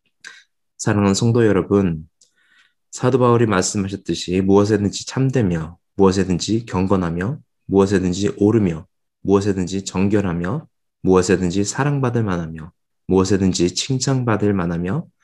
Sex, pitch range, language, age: male, 90-110 Hz, Korean, 20-39